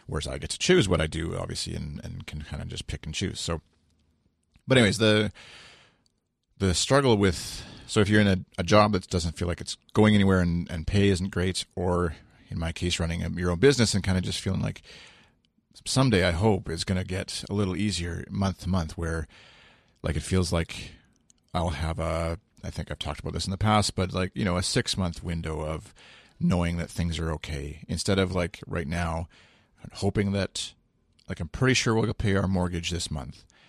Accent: American